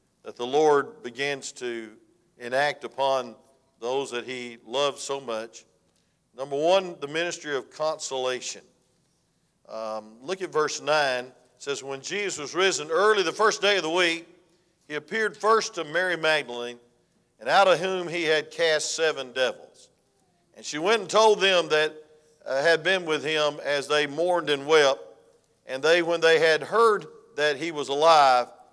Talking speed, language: 165 wpm, English